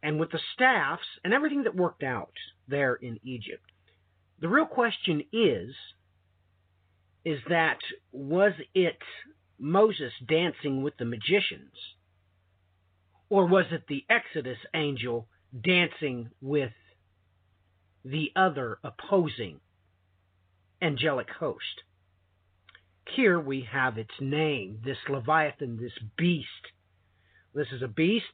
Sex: male